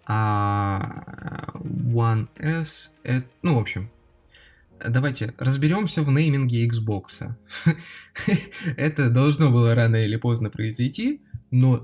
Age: 20-39